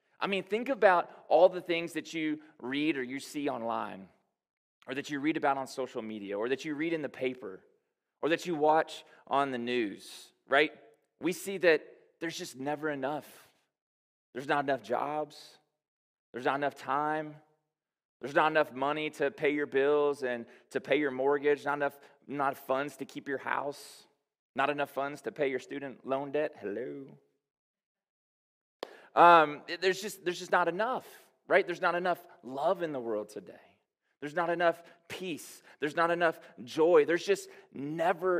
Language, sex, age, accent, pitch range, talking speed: English, male, 20-39, American, 135-170 Hz, 170 wpm